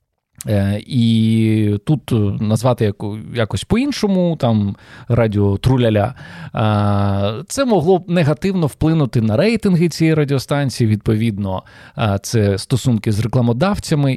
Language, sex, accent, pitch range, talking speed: Ukrainian, male, native, 110-150 Hz, 90 wpm